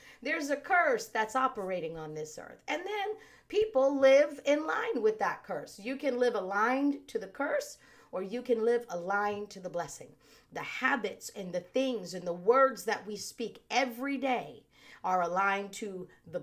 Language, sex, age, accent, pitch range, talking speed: English, female, 40-59, American, 185-270 Hz, 180 wpm